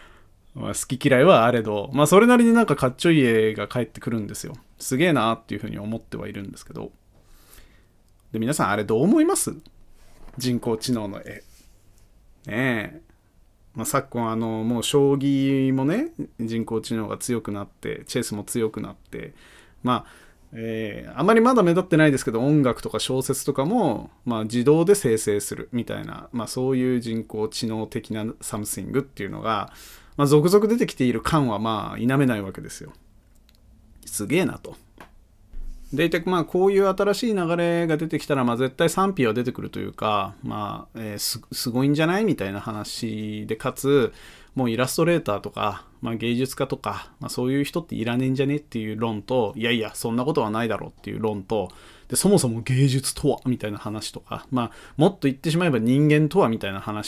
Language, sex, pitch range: Japanese, male, 110-145 Hz